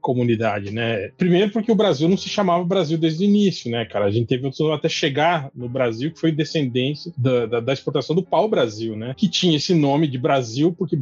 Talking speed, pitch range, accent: 210 wpm, 130-170 Hz, Brazilian